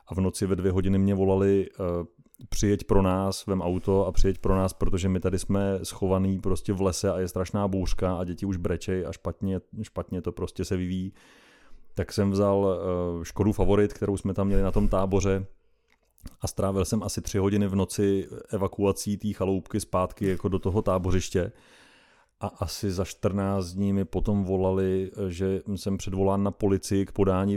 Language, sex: Czech, male